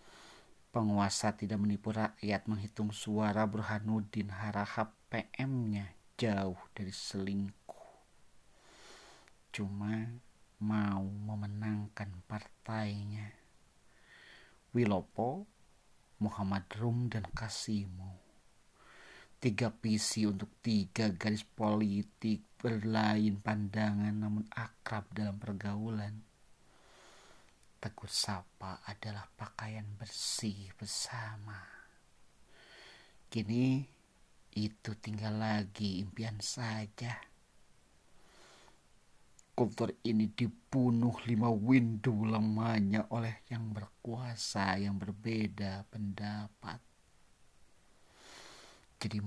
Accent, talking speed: native, 70 wpm